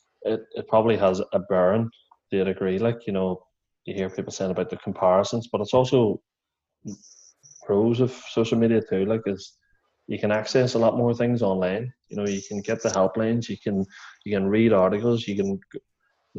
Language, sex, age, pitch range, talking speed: English, male, 20-39, 95-110 Hz, 190 wpm